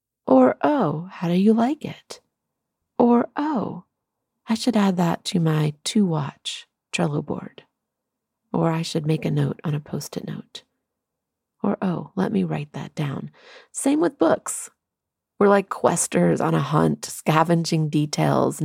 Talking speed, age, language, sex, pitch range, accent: 150 wpm, 40-59, English, female, 150-195 Hz, American